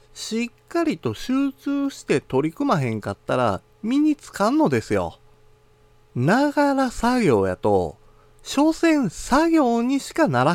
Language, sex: Japanese, male